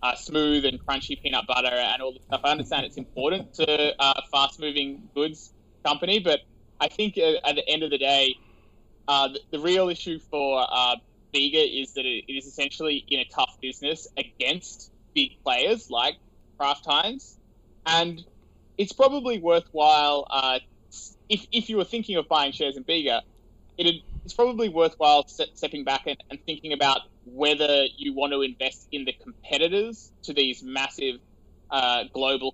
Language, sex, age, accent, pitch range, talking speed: English, male, 20-39, Australian, 130-160 Hz, 170 wpm